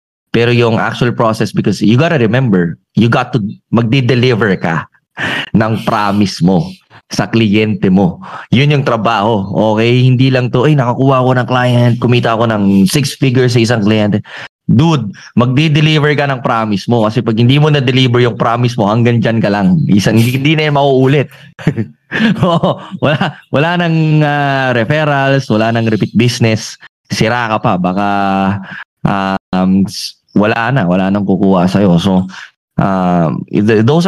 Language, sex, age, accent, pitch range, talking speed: Filipino, male, 20-39, native, 105-135 Hz, 140 wpm